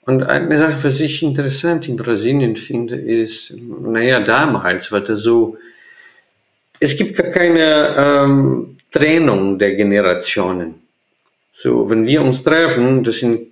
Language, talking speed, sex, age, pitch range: German, 135 wpm, male, 50-69, 115-160 Hz